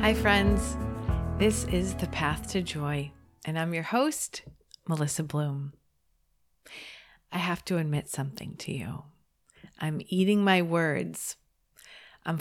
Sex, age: female, 40-59